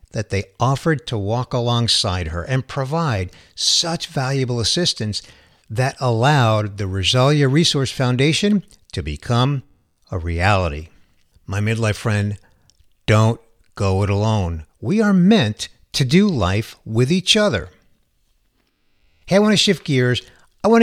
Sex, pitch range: male, 100-145 Hz